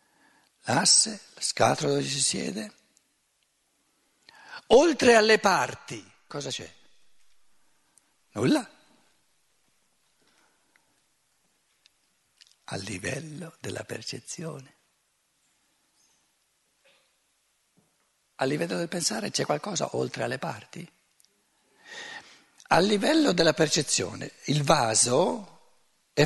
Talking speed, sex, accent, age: 75 wpm, male, native, 60-79